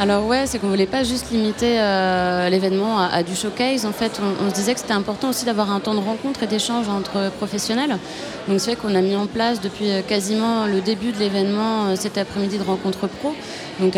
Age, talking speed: 20-39, 235 wpm